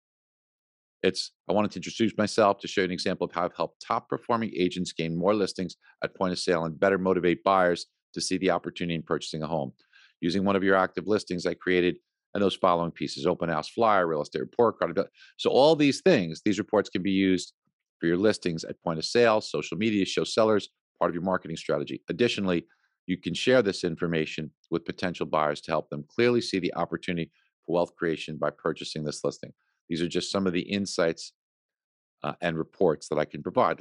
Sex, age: male, 50-69